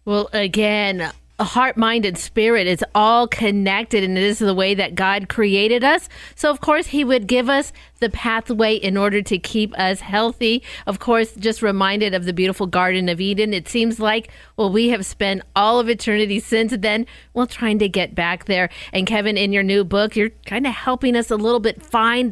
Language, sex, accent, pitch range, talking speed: English, female, American, 200-250 Hz, 205 wpm